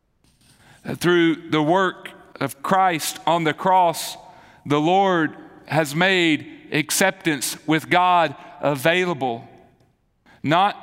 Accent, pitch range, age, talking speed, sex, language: American, 155-190 Hz, 40-59, 95 wpm, male, English